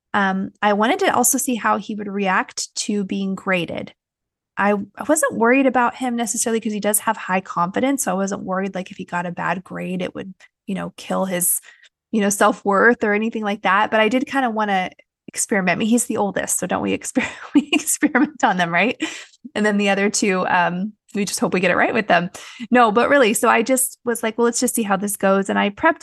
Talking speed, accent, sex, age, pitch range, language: 240 wpm, American, female, 20-39, 185-230 Hz, English